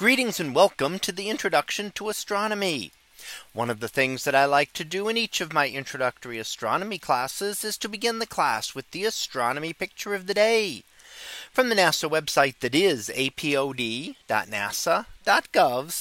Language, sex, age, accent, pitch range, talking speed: English, male, 40-59, American, 135-200 Hz, 160 wpm